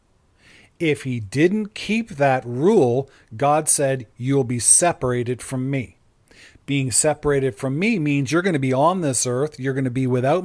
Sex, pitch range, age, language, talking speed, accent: male, 125-155 Hz, 40-59, English, 170 wpm, American